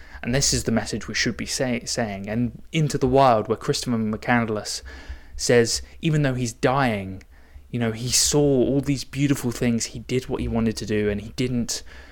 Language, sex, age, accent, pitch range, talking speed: English, male, 20-39, British, 105-140 Hz, 200 wpm